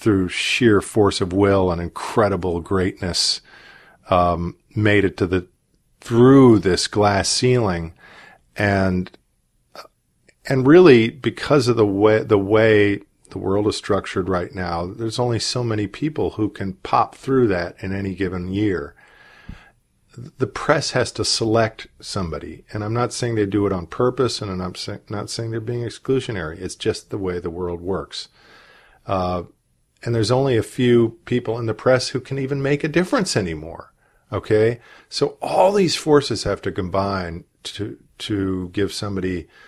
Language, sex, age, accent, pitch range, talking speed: English, male, 40-59, American, 95-115 Hz, 155 wpm